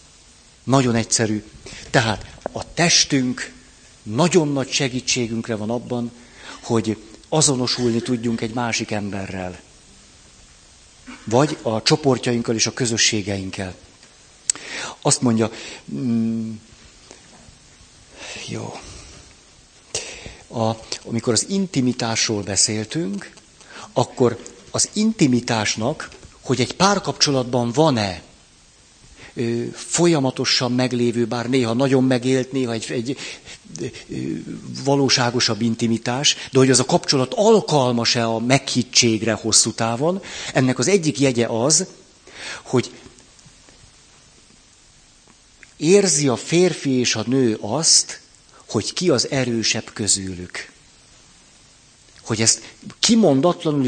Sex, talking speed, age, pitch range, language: male, 90 wpm, 50-69, 115-140 Hz, Hungarian